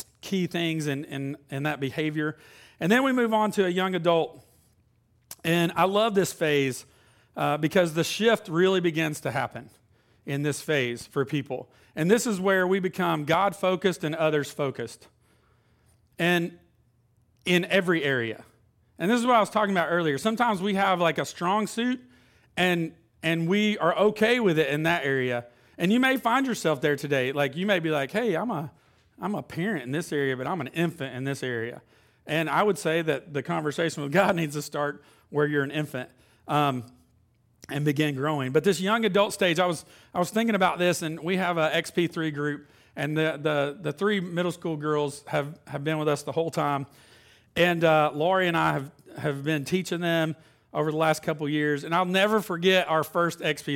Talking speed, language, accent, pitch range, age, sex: 200 wpm, English, American, 140-180 Hz, 40-59, male